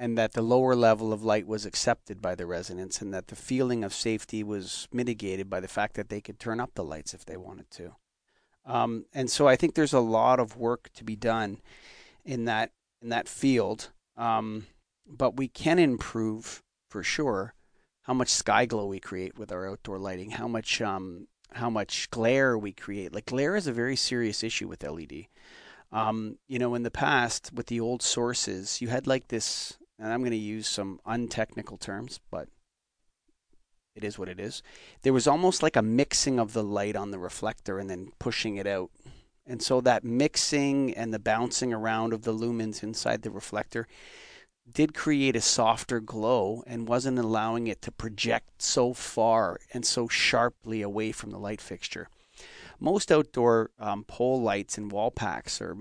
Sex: male